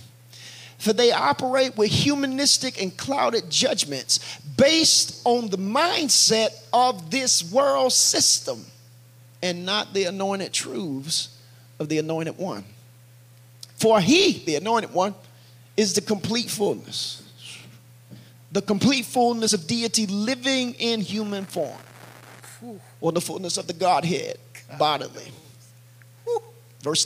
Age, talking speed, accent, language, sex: 30-49, 115 wpm, American, English, male